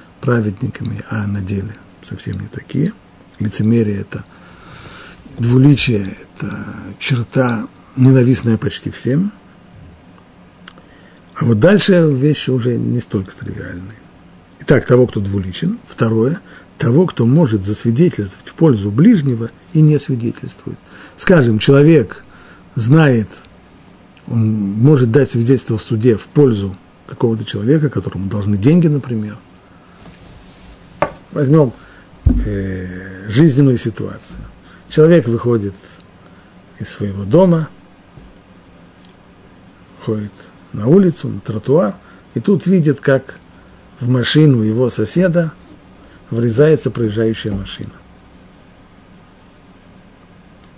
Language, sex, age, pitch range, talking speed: Russian, male, 50-69, 95-135 Hz, 95 wpm